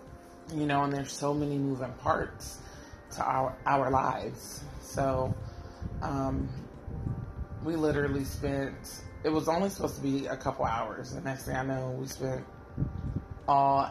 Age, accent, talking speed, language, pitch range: 20-39, American, 145 wpm, English, 130-170 Hz